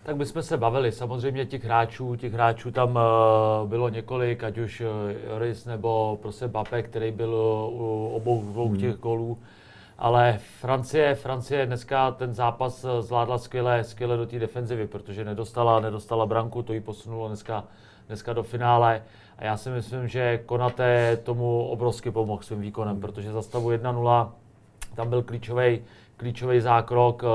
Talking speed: 155 wpm